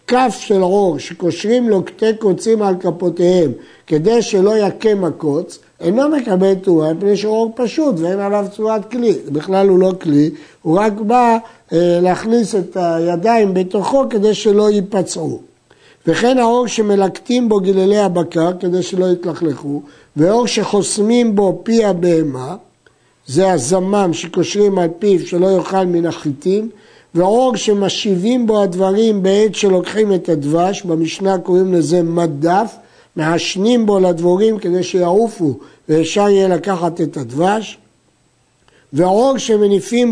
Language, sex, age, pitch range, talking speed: Hebrew, male, 60-79, 170-215 Hz, 130 wpm